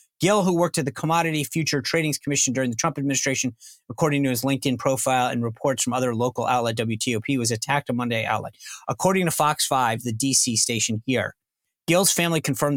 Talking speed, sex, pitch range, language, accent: 195 wpm, male, 135-210 Hz, English, American